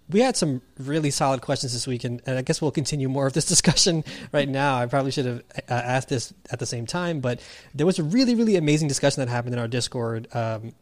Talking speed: 250 wpm